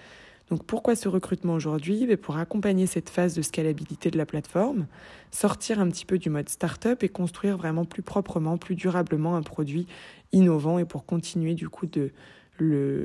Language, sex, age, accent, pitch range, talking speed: French, female, 20-39, French, 155-185 Hz, 180 wpm